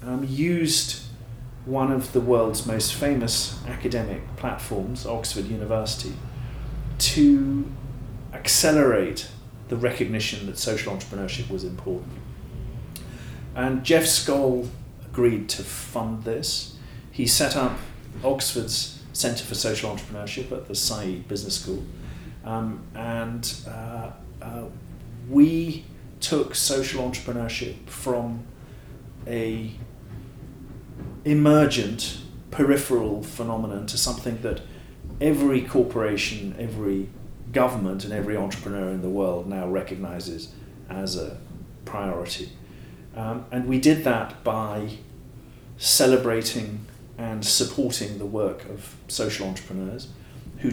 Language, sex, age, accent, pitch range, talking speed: English, male, 40-59, British, 105-130 Hz, 105 wpm